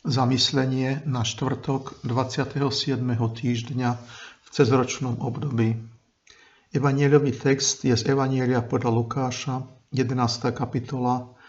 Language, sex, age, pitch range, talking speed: Slovak, male, 50-69, 115-135 Hz, 90 wpm